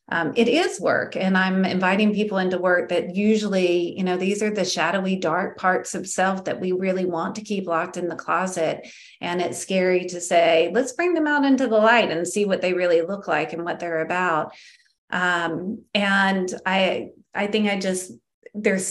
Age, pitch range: 30-49, 180-220 Hz